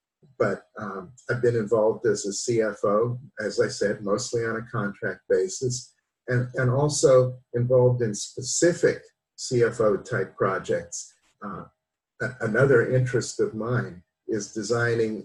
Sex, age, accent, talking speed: male, 50-69, American, 120 wpm